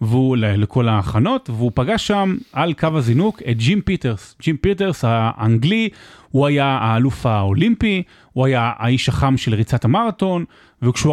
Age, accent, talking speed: 30-49, native, 145 wpm